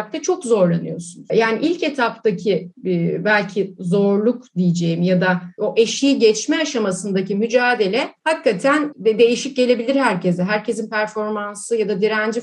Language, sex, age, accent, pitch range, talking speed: Turkish, female, 30-49, native, 210-280 Hz, 120 wpm